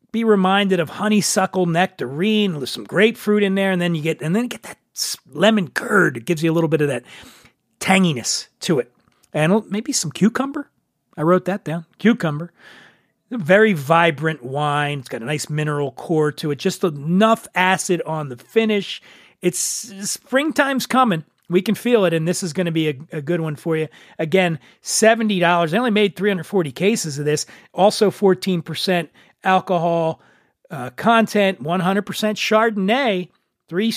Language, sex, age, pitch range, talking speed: English, male, 40-59, 165-215 Hz, 175 wpm